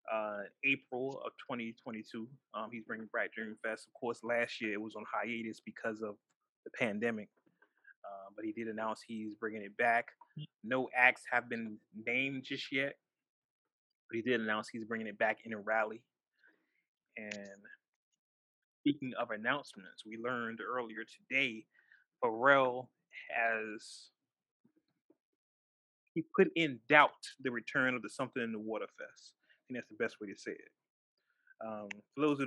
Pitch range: 110-135 Hz